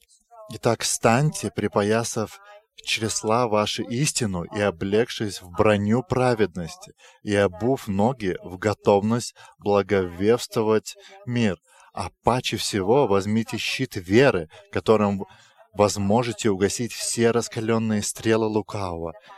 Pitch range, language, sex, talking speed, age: 105-120 Hz, English, male, 95 wpm, 20-39